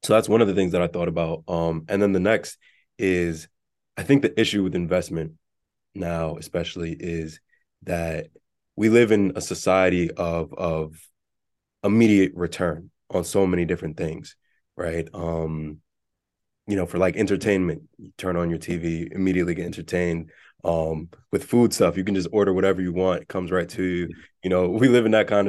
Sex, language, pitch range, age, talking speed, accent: male, English, 85-100 Hz, 20-39, 185 wpm, American